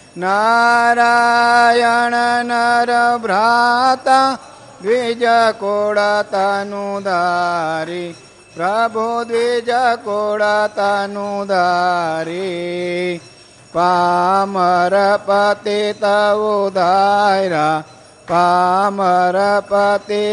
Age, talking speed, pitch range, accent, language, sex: 50-69, 35 wpm, 175-215 Hz, native, Gujarati, male